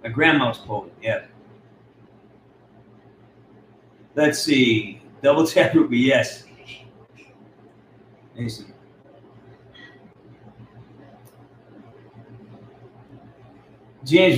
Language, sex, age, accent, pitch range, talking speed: English, male, 40-59, American, 120-145 Hz, 60 wpm